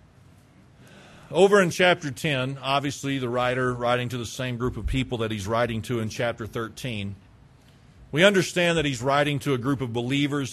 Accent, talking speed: American, 175 wpm